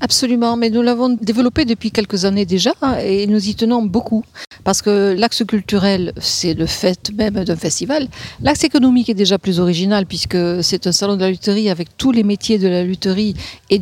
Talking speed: 195 wpm